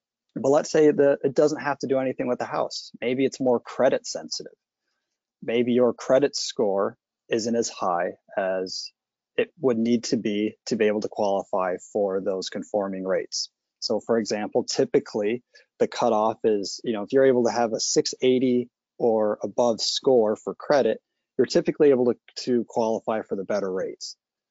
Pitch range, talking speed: 110-150 Hz, 175 wpm